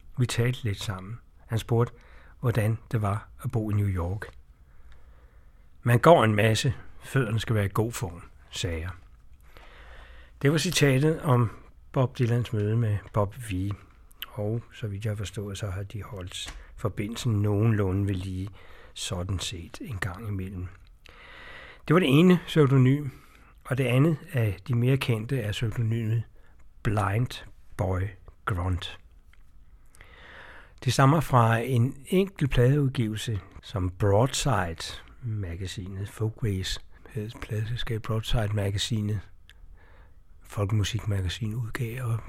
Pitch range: 90-115 Hz